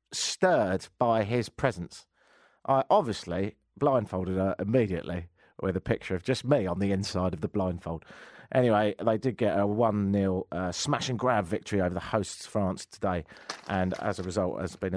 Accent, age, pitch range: British, 40-59, 95-145 Hz